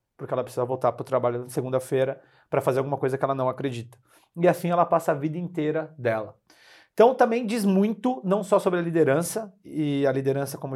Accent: Brazilian